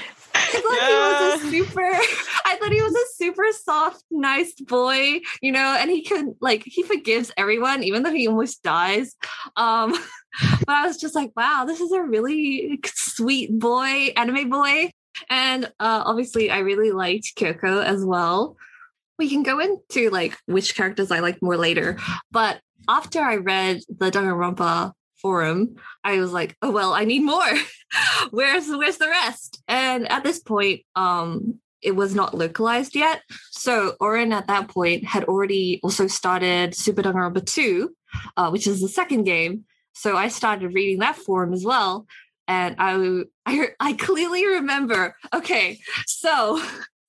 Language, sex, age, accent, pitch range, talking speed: English, female, 20-39, American, 195-310 Hz, 165 wpm